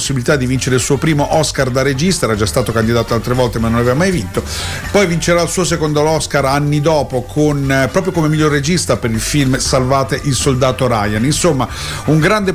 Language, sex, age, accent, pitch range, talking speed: Italian, male, 40-59, native, 125-160 Hz, 210 wpm